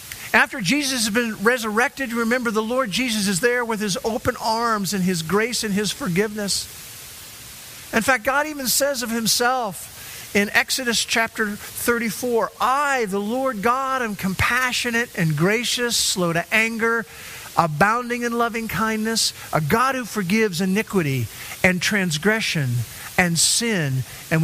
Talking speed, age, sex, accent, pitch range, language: 140 wpm, 50-69, male, American, 170-235 Hz, English